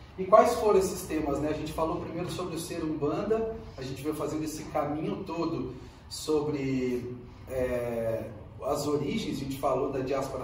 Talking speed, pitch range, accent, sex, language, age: 165 wpm, 130-165 Hz, Brazilian, male, Portuguese, 40-59